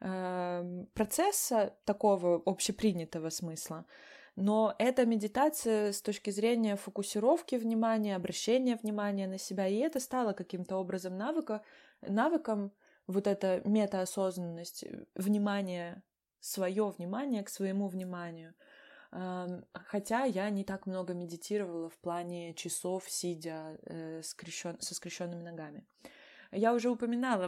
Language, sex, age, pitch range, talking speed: Russian, female, 20-39, 175-220 Hz, 105 wpm